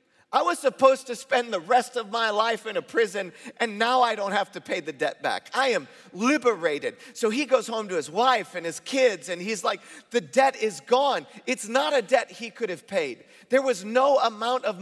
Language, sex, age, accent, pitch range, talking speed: English, male, 40-59, American, 170-250 Hz, 225 wpm